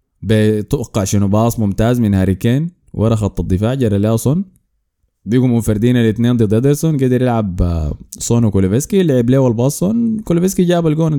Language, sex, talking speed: Arabic, male, 150 wpm